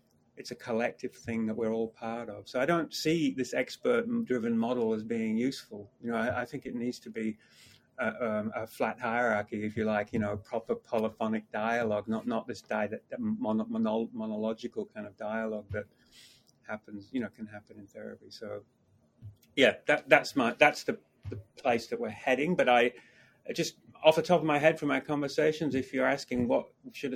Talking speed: 190 wpm